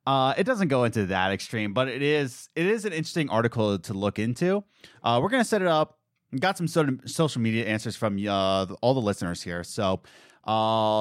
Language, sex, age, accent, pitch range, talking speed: English, male, 20-39, American, 100-155 Hz, 215 wpm